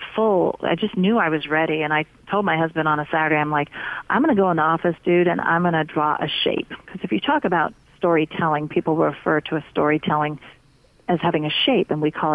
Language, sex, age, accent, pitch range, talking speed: English, female, 40-59, American, 155-175 Hz, 245 wpm